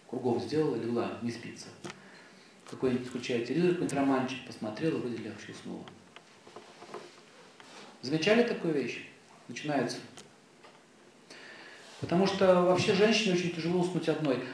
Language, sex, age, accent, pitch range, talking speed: Russian, male, 40-59, native, 130-185 Hz, 105 wpm